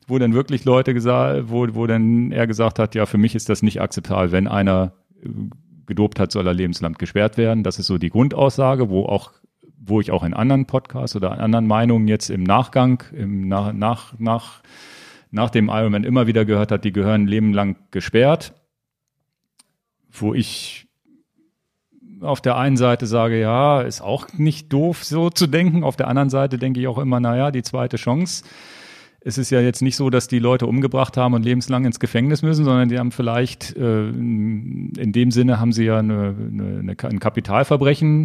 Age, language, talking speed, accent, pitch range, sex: 40-59, German, 185 wpm, German, 105-130 Hz, male